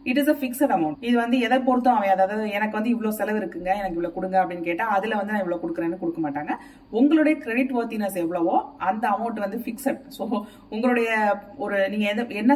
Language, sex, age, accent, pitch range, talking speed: Tamil, female, 30-49, native, 185-255 Hz, 190 wpm